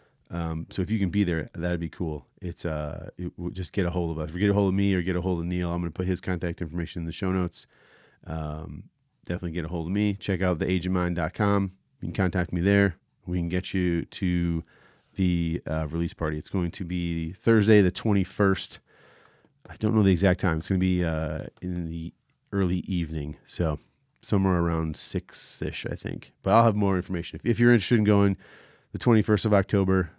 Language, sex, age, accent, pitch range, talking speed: English, male, 40-59, American, 85-115 Hz, 215 wpm